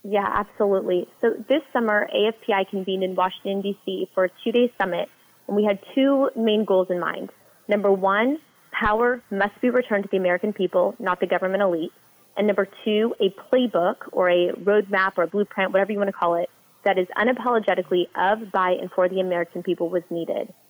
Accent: American